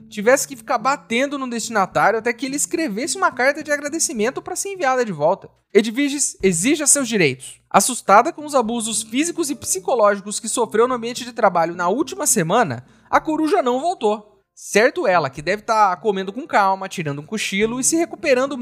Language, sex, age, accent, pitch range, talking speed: Portuguese, male, 30-49, Brazilian, 200-280 Hz, 185 wpm